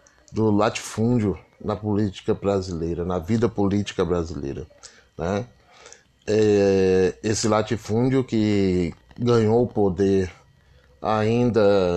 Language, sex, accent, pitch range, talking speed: Portuguese, male, Brazilian, 95-120 Hz, 90 wpm